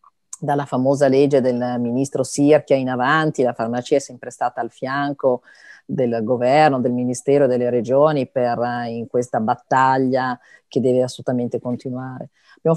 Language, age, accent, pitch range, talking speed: Italian, 40-59, native, 125-145 Hz, 145 wpm